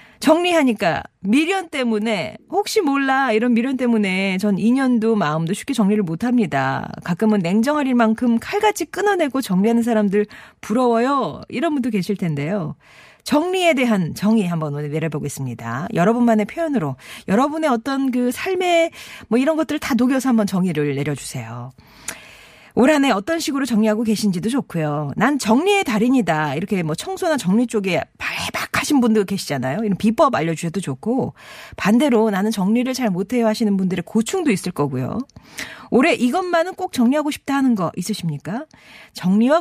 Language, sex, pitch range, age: Korean, female, 180-260 Hz, 40-59